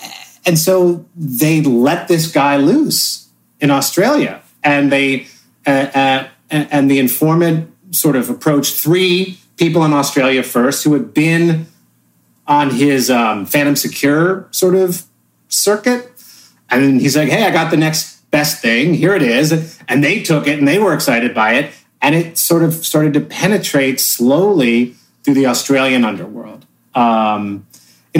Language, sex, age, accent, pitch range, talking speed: English, male, 30-49, American, 115-160 Hz, 155 wpm